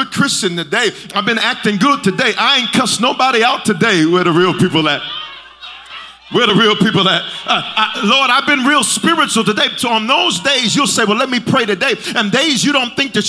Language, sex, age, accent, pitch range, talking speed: English, male, 40-59, American, 220-315 Hz, 210 wpm